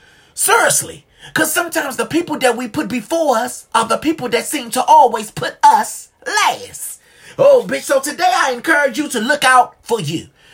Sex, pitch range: male, 210-345 Hz